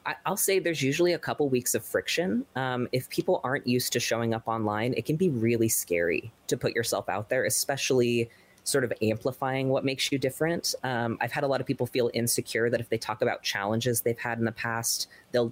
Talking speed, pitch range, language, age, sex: 220 wpm, 115-145 Hz, English, 20-39, female